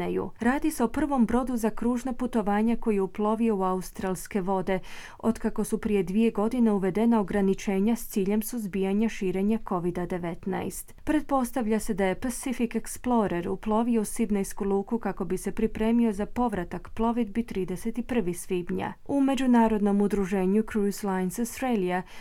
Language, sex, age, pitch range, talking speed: Croatian, female, 30-49, 185-235 Hz, 140 wpm